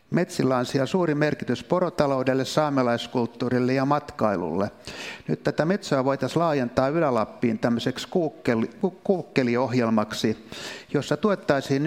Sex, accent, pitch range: male, native, 120-145 Hz